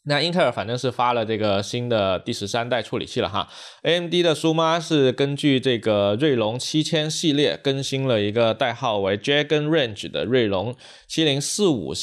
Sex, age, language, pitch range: male, 20-39, Chinese, 110-145 Hz